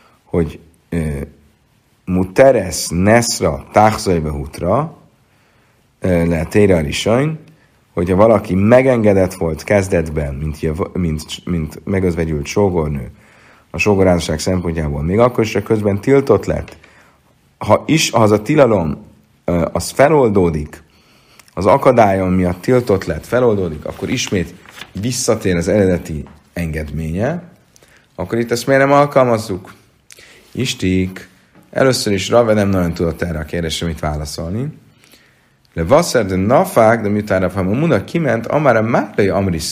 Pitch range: 85-120 Hz